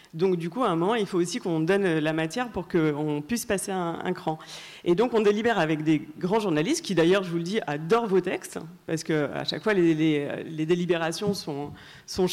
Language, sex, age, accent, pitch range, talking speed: French, female, 40-59, French, 160-210 Hz, 230 wpm